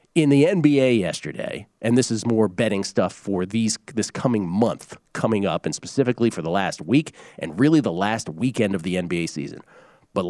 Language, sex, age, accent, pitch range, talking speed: English, male, 40-59, American, 100-140 Hz, 190 wpm